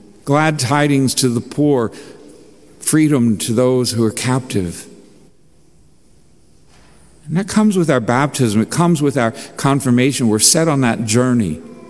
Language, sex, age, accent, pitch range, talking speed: English, male, 50-69, American, 120-160 Hz, 135 wpm